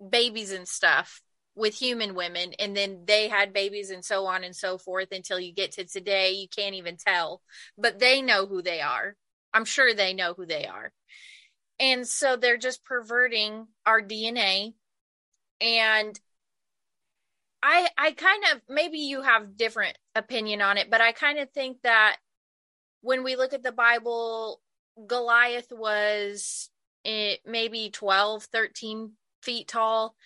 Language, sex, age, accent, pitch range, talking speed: English, female, 20-39, American, 200-240 Hz, 155 wpm